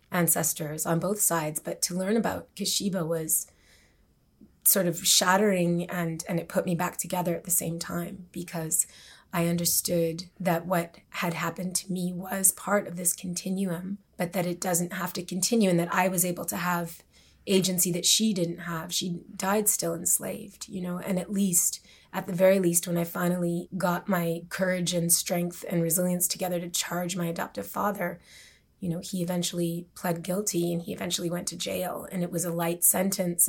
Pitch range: 170-190 Hz